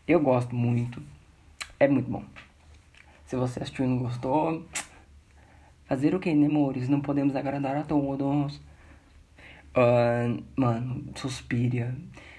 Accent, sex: Brazilian, male